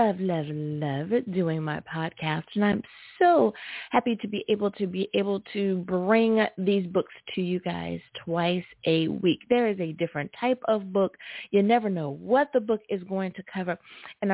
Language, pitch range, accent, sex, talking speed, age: English, 180-240 Hz, American, female, 185 wpm, 30-49